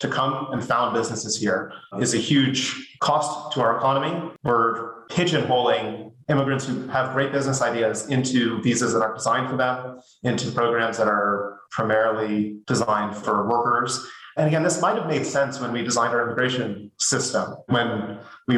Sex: male